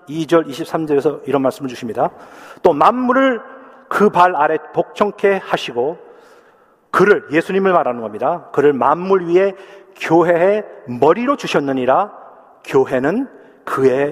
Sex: male